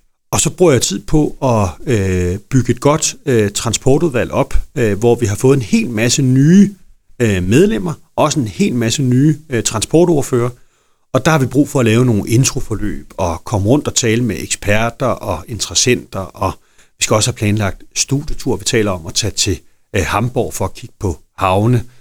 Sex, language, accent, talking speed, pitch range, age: male, Danish, native, 195 wpm, 105-130 Hz, 40-59